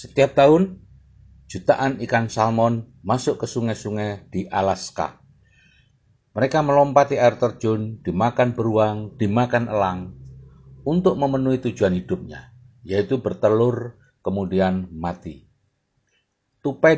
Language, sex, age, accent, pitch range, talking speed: Indonesian, male, 50-69, native, 100-130 Hz, 95 wpm